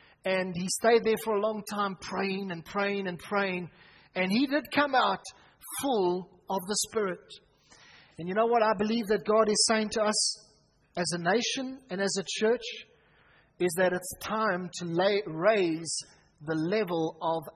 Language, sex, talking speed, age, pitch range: English, male, 170 wpm, 40-59, 180-220 Hz